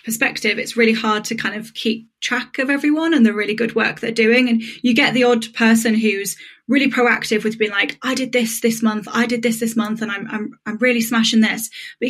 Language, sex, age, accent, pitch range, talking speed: English, female, 10-29, British, 205-230 Hz, 240 wpm